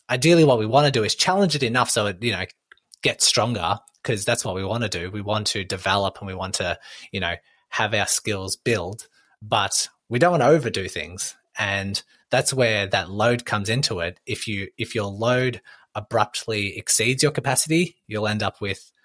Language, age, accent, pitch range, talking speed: English, 20-39, Australian, 100-115 Hz, 205 wpm